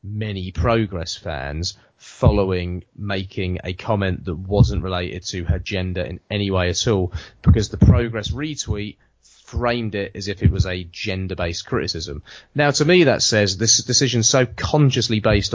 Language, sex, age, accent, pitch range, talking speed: English, male, 30-49, British, 95-115 Hz, 160 wpm